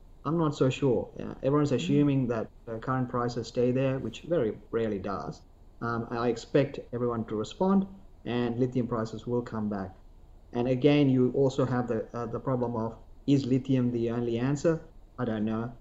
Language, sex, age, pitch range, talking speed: English, male, 30-49, 115-130 Hz, 175 wpm